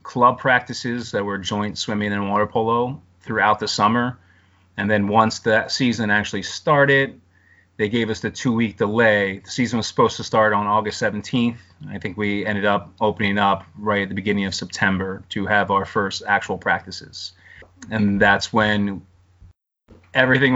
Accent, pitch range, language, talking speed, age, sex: American, 100-115 Hz, English, 165 wpm, 30-49, male